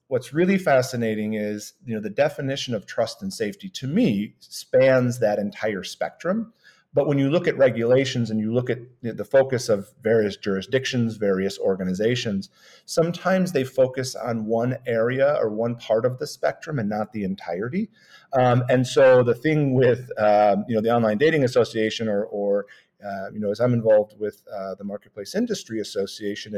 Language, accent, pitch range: English, American, 105-135 Hz